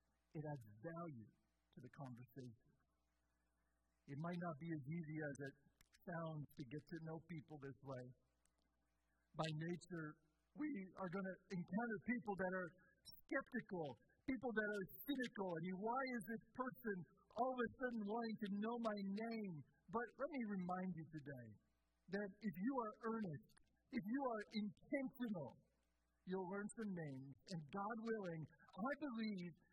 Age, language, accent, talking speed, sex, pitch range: 50-69, English, American, 155 wpm, male, 150-225 Hz